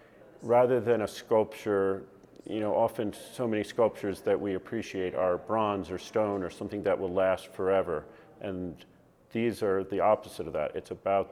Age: 40-59